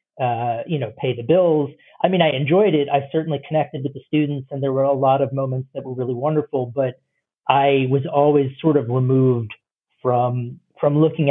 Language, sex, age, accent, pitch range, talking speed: English, male, 40-59, American, 130-155 Hz, 200 wpm